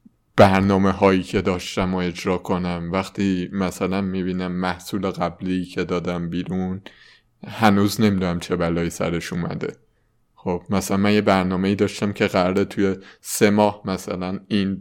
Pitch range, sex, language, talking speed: 90-105 Hz, male, Persian, 140 wpm